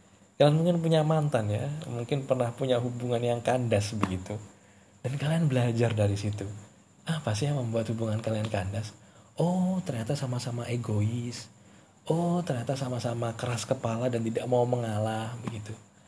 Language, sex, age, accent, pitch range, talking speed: Indonesian, male, 20-39, native, 105-160 Hz, 140 wpm